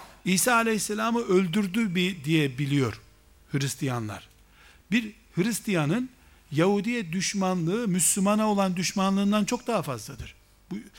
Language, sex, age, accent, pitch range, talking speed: Turkish, male, 60-79, native, 145-195 Hz, 95 wpm